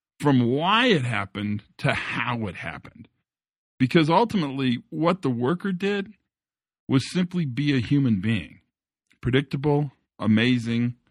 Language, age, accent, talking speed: English, 50-69, American, 120 wpm